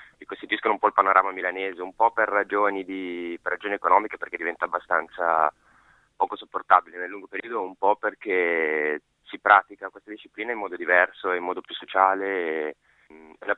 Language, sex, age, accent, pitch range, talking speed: Italian, male, 20-39, native, 85-100 Hz, 170 wpm